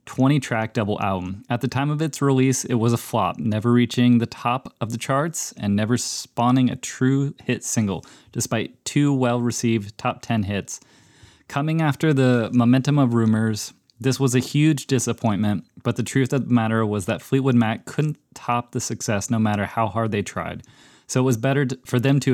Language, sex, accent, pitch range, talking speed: English, male, American, 110-130 Hz, 190 wpm